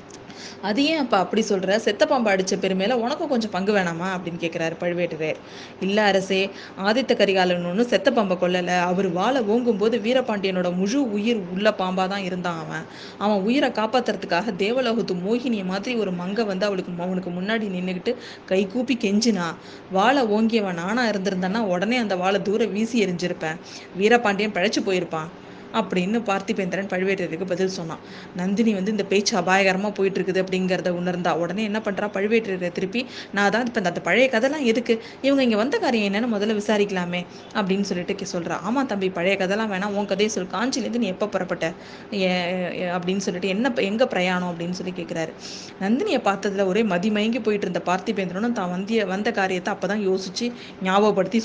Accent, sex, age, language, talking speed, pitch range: native, female, 20-39, Tamil, 155 wpm, 185-225 Hz